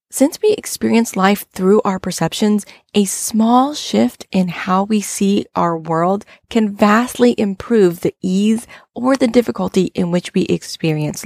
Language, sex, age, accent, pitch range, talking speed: English, female, 30-49, American, 170-215 Hz, 150 wpm